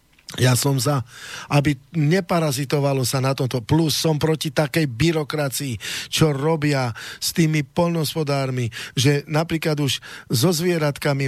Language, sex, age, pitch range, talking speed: English, male, 40-59, 155-185 Hz, 130 wpm